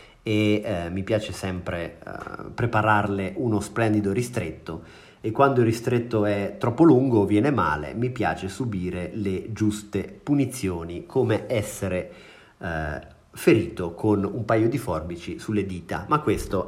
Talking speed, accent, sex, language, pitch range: 140 wpm, native, male, Italian, 100-120 Hz